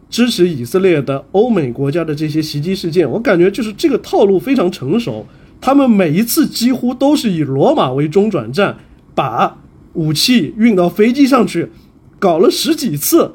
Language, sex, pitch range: Chinese, male, 160-245 Hz